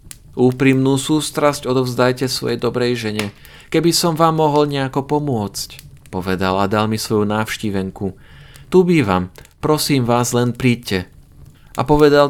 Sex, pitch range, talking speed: male, 105-140 Hz, 125 wpm